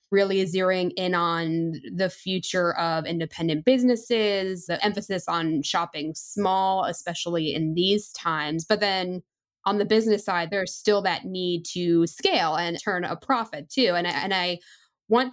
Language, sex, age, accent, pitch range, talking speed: English, female, 10-29, American, 175-210 Hz, 155 wpm